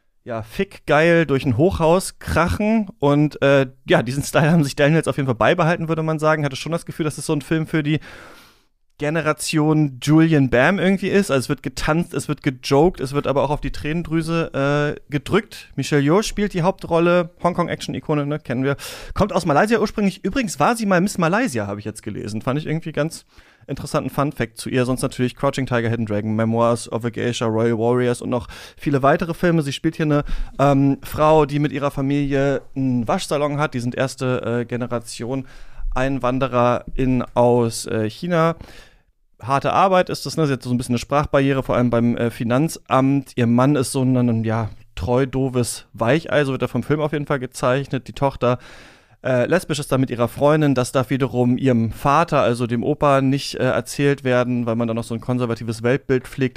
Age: 30-49